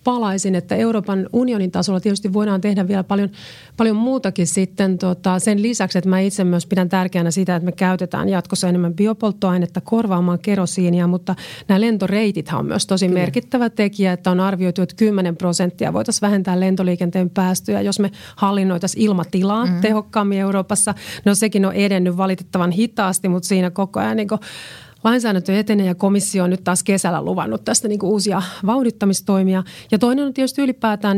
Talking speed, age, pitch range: 160 wpm, 40-59, 185-210 Hz